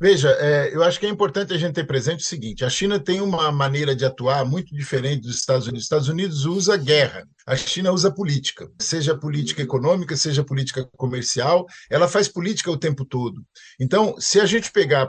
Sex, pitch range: male, 140-180 Hz